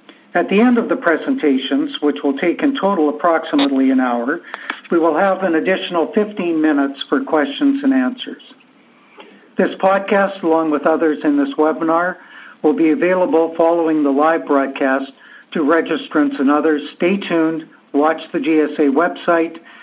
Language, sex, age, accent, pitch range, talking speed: English, male, 60-79, American, 150-215 Hz, 150 wpm